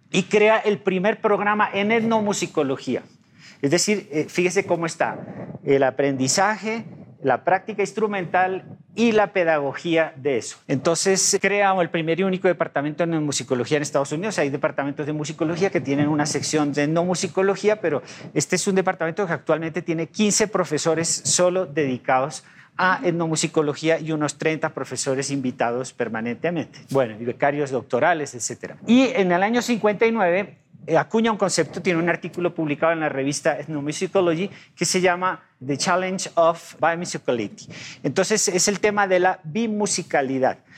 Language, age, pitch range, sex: Spanish, 50-69, 150-190 Hz, male